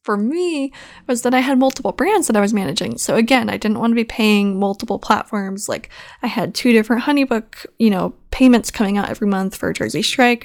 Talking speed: 220 wpm